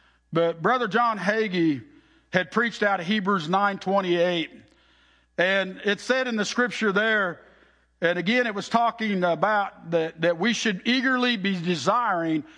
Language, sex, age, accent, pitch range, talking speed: English, male, 50-69, American, 180-230 Hz, 145 wpm